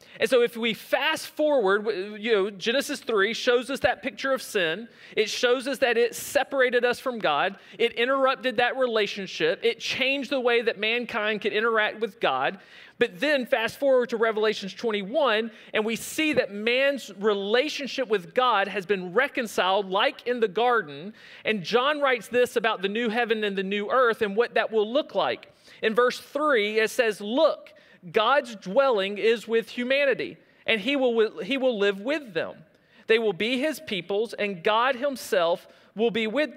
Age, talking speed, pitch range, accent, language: 40-59, 180 wpm, 210-260 Hz, American, English